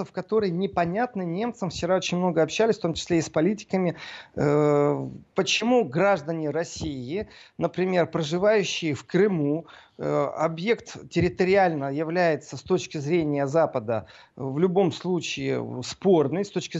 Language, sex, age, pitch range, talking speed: Russian, male, 40-59, 155-205 Hz, 125 wpm